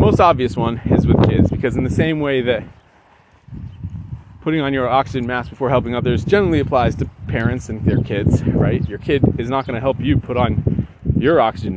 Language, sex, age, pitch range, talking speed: English, male, 30-49, 105-125 Hz, 210 wpm